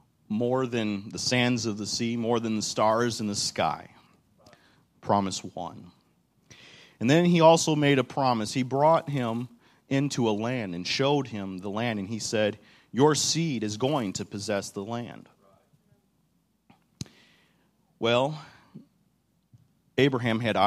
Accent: American